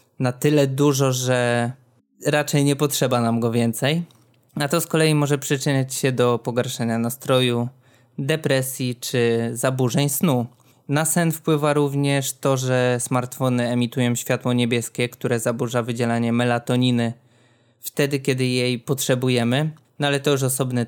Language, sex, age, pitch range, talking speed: Polish, male, 20-39, 120-140 Hz, 135 wpm